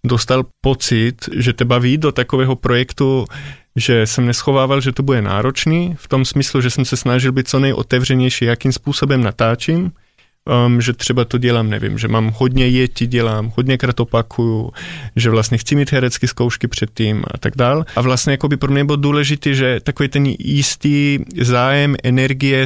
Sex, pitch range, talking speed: male, 120-140 Hz, 170 wpm